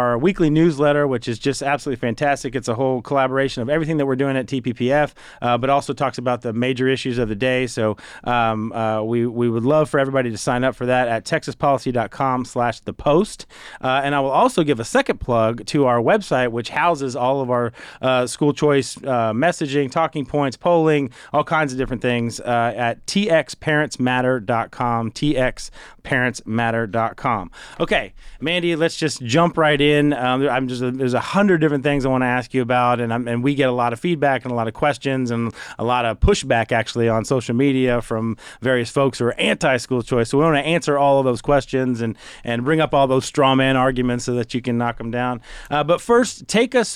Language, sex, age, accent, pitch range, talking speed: English, male, 30-49, American, 120-145 Hz, 210 wpm